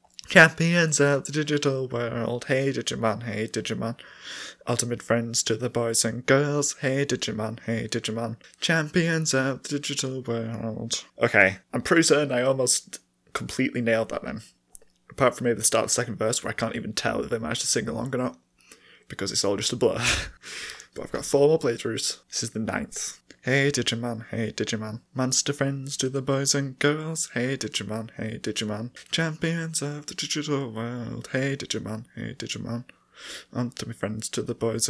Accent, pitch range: British, 115-135 Hz